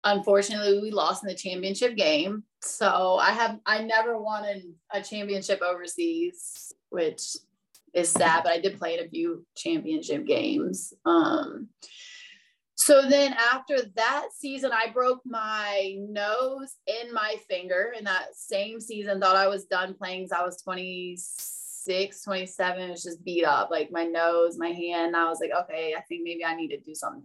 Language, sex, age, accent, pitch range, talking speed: English, female, 20-39, American, 180-225 Hz, 165 wpm